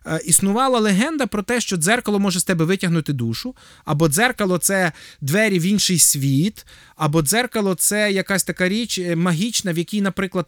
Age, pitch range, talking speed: 20-39, 165-235 Hz, 170 wpm